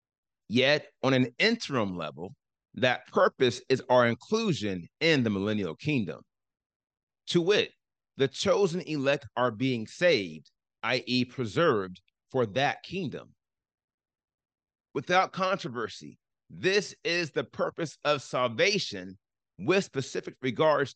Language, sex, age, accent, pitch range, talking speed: English, male, 30-49, American, 120-170 Hz, 110 wpm